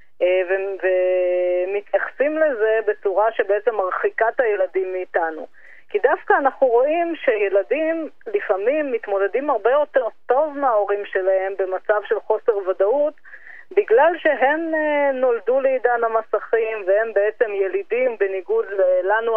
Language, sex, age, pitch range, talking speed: Hebrew, female, 20-39, 195-290 Hz, 110 wpm